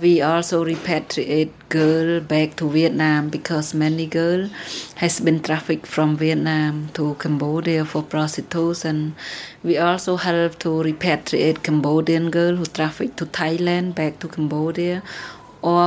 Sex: female